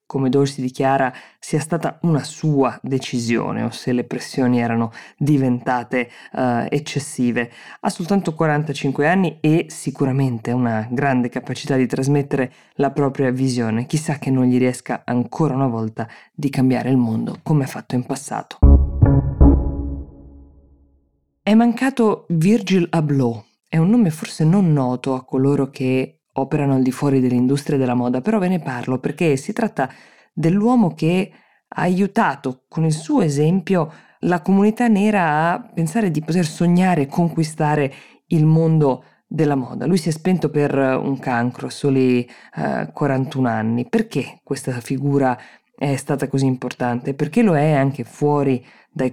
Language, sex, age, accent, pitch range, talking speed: Italian, female, 20-39, native, 130-165 Hz, 145 wpm